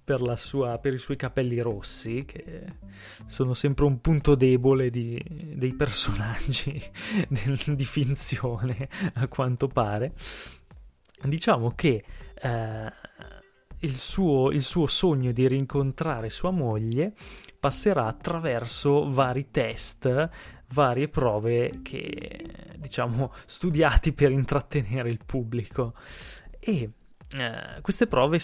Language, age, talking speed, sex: Italian, 20-39, 100 wpm, male